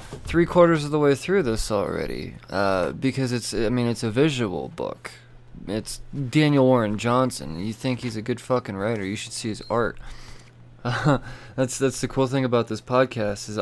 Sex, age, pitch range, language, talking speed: male, 20-39, 110-130 Hz, English, 175 wpm